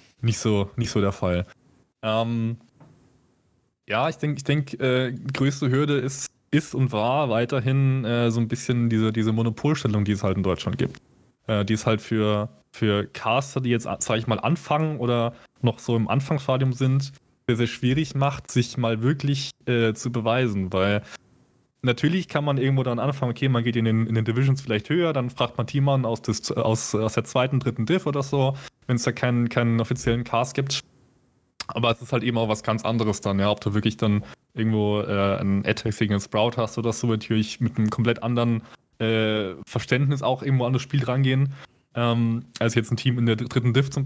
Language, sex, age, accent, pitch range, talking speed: German, male, 20-39, German, 110-130 Hz, 200 wpm